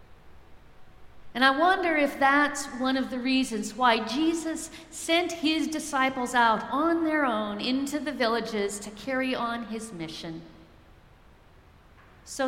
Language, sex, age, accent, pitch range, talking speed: English, female, 50-69, American, 210-265 Hz, 130 wpm